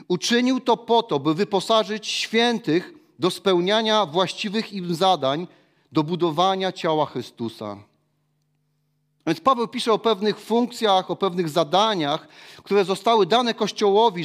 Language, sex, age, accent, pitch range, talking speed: Polish, male, 40-59, native, 150-200 Hz, 120 wpm